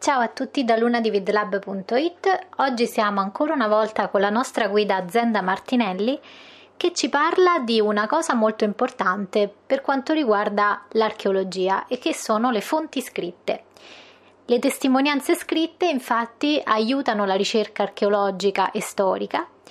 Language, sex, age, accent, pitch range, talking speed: Italian, female, 20-39, native, 200-275 Hz, 135 wpm